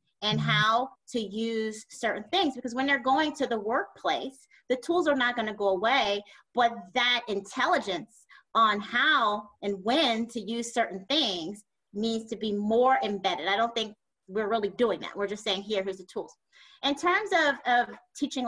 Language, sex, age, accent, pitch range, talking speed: English, female, 30-49, American, 215-260 Hz, 180 wpm